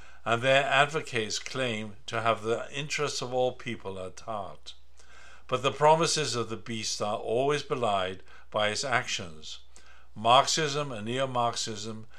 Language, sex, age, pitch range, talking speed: English, male, 60-79, 90-135 Hz, 140 wpm